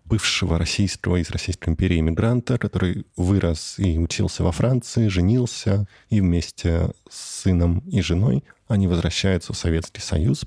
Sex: male